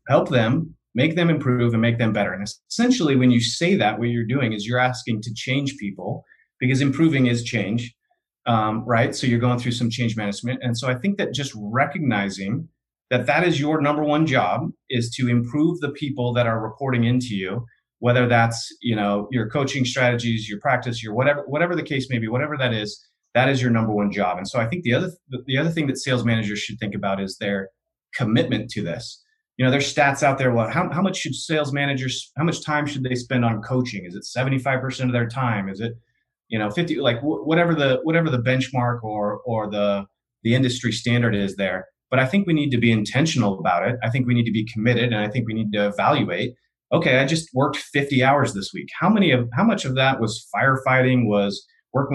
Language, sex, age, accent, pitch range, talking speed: English, male, 30-49, American, 115-140 Hz, 225 wpm